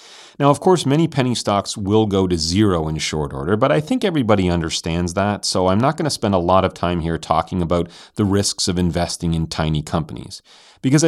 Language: English